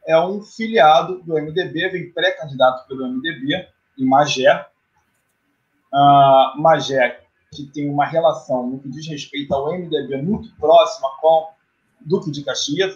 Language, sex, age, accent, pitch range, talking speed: Portuguese, male, 20-39, Brazilian, 145-195 Hz, 135 wpm